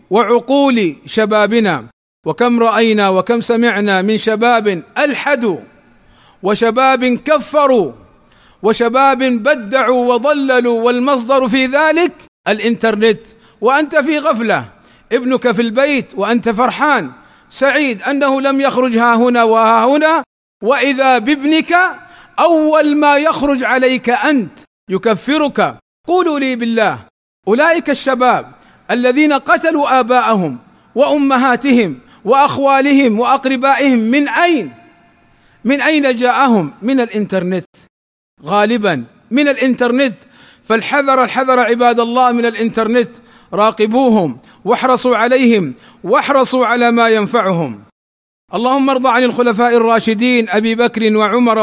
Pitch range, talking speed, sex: 220-270 Hz, 100 wpm, male